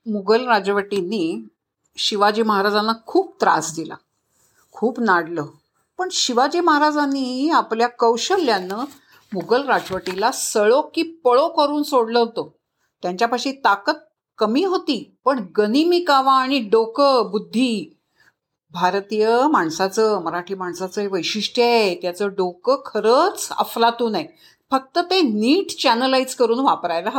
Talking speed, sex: 110 wpm, female